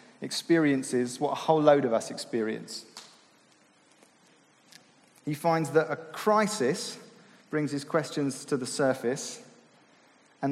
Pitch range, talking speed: 135-175 Hz, 115 wpm